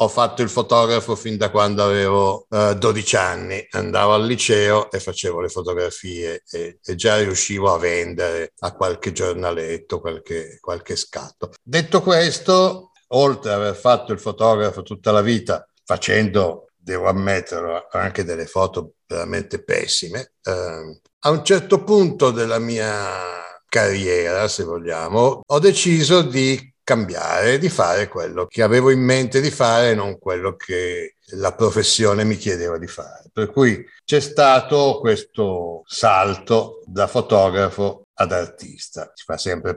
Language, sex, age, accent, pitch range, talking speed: Italian, male, 60-79, native, 95-135 Hz, 145 wpm